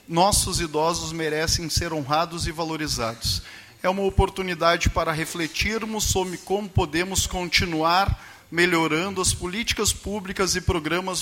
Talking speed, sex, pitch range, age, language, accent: 120 wpm, male, 150-190 Hz, 40-59, Portuguese, Brazilian